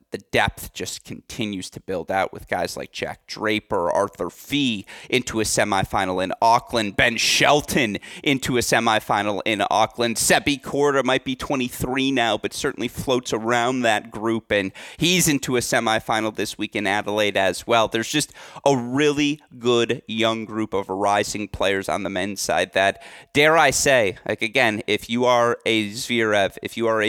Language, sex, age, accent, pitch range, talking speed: English, male, 30-49, American, 105-120 Hz, 175 wpm